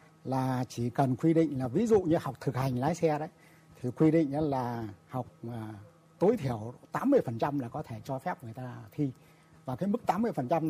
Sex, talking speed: male, 195 wpm